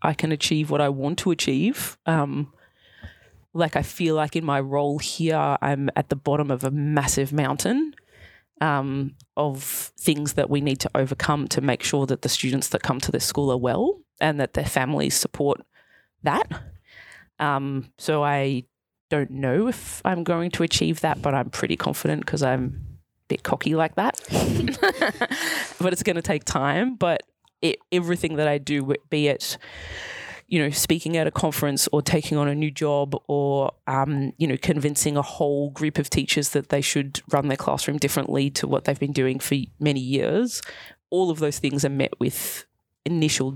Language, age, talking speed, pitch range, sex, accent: English, 20-39, 185 wpm, 135-155 Hz, female, Australian